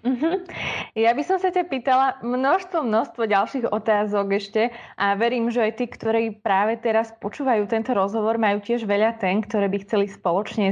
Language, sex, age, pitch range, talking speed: Slovak, female, 20-39, 205-245 Hz, 175 wpm